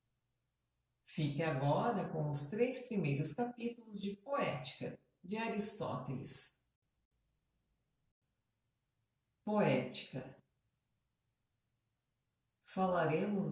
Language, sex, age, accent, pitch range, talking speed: Portuguese, female, 40-59, Brazilian, 130-190 Hz, 60 wpm